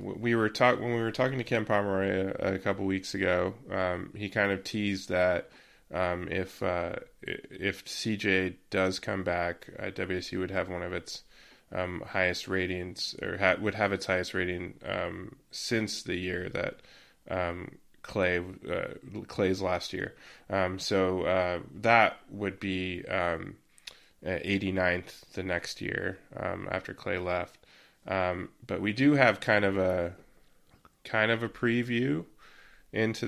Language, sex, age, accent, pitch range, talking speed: English, male, 20-39, American, 90-105 Hz, 155 wpm